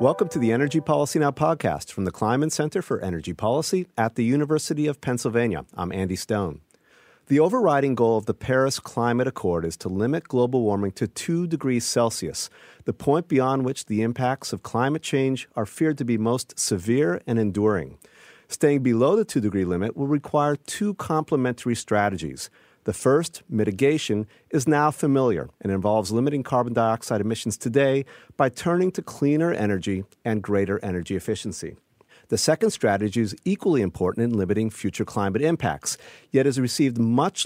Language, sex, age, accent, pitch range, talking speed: English, male, 40-59, American, 105-145 Hz, 165 wpm